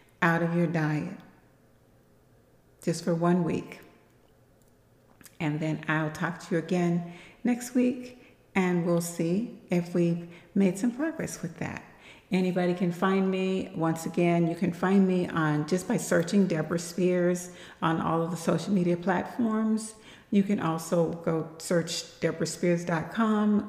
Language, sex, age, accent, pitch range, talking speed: English, female, 60-79, American, 170-205 Hz, 140 wpm